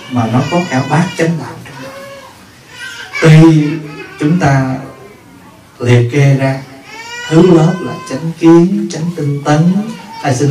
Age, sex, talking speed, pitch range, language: 20-39, male, 130 wpm, 125-170 Hz, Vietnamese